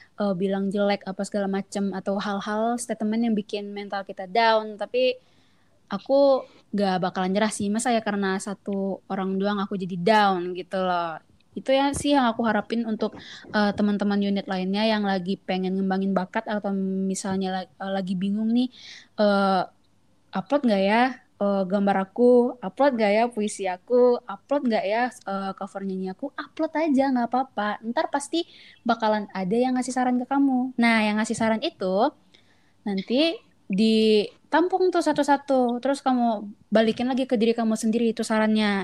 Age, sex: 20-39, female